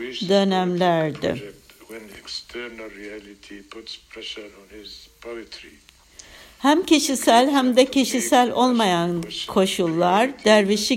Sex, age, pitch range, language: female, 60-79, 170-230 Hz, Turkish